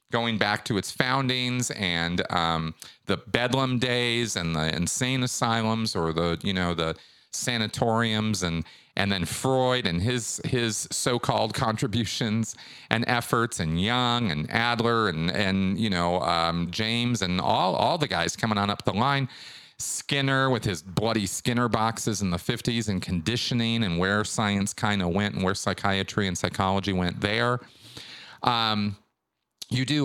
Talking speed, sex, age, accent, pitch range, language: 155 wpm, male, 40-59, American, 95-125 Hz, English